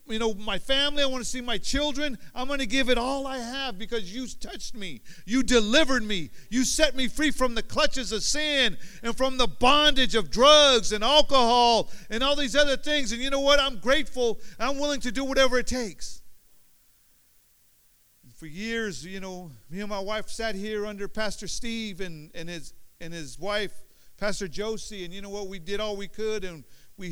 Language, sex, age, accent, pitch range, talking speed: English, male, 50-69, American, 205-250 Hz, 205 wpm